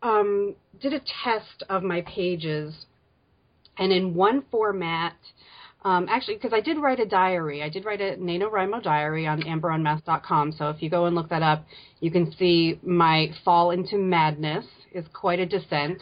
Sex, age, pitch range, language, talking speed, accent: female, 30-49, 155-190 Hz, English, 170 wpm, American